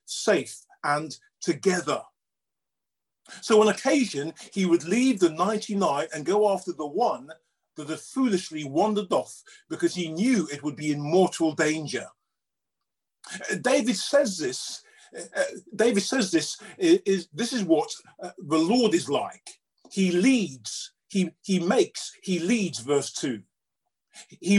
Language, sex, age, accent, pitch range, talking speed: English, male, 50-69, British, 160-225 Hz, 135 wpm